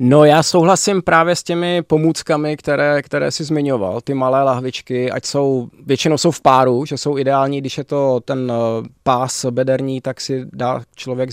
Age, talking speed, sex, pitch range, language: 20-39, 175 wpm, male, 120-140 Hz, Czech